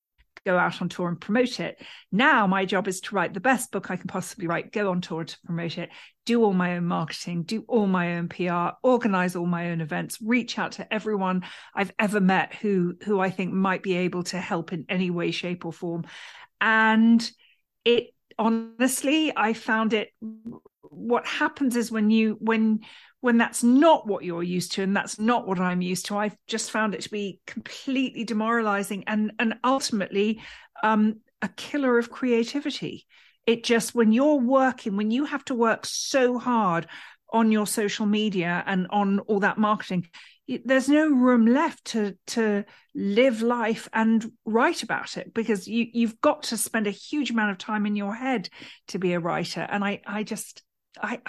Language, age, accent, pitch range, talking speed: English, 40-59, British, 190-235 Hz, 190 wpm